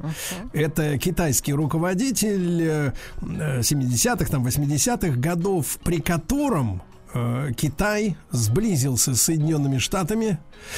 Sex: male